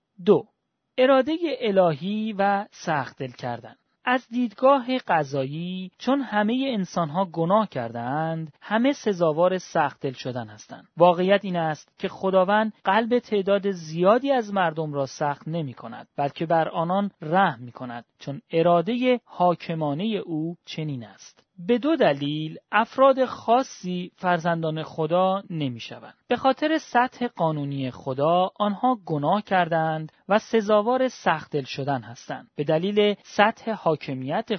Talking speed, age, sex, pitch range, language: 125 wpm, 30-49, male, 150-215 Hz, Persian